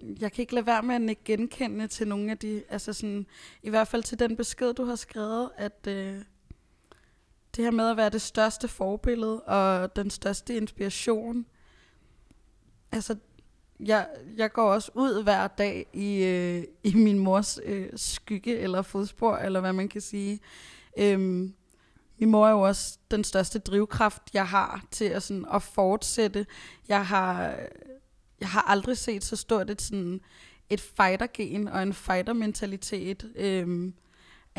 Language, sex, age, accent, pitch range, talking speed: Danish, female, 20-39, native, 190-220 Hz, 160 wpm